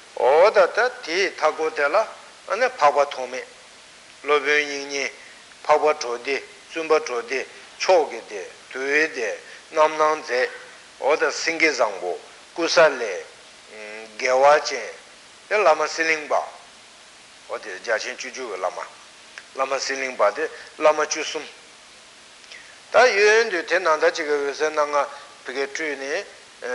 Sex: male